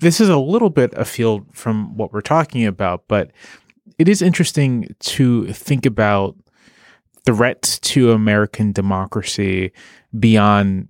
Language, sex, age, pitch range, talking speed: English, male, 30-49, 105-135 Hz, 125 wpm